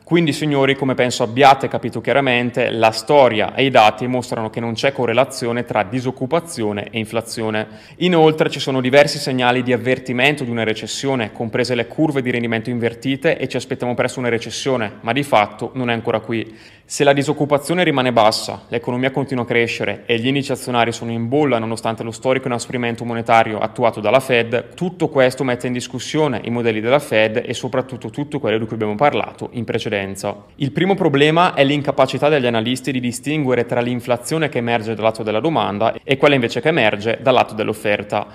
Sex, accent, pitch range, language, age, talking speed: male, native, 115-135 Hz, Italian, 20-39, 185 wpm